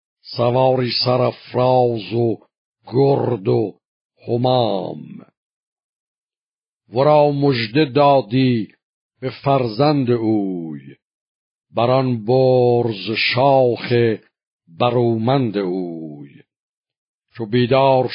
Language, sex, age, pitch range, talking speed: Persian, male, 50-69, 115-140 Hz, 65 wpm